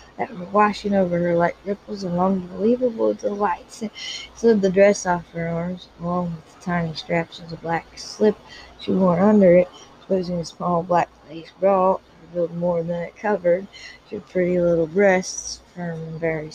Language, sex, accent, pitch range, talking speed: English, female, American, 165-185 Hz, 175 wpm